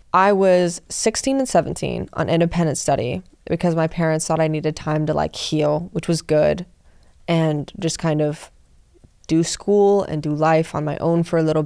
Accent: American